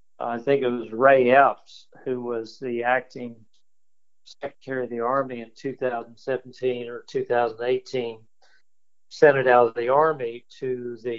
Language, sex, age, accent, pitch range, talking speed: English, male, 50-69, American, 120-150 Hz, 140 wpm